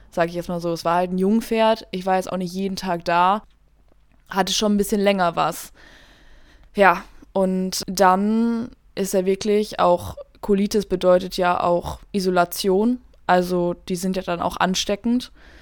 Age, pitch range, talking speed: 20-39, 185-220 Hz, 165 wpm